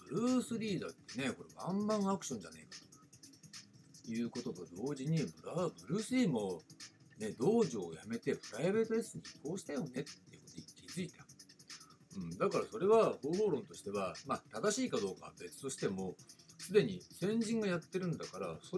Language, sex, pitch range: Japanese, male, 145-220 Hz